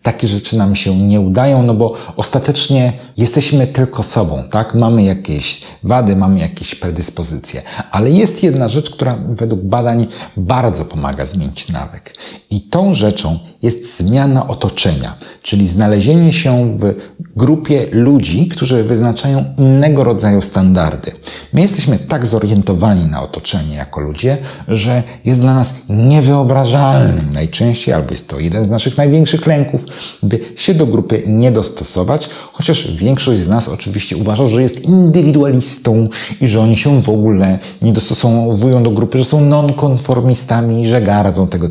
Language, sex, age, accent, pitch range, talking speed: Polish, male, 40-59, native, 100-135 Hz, 145 wpm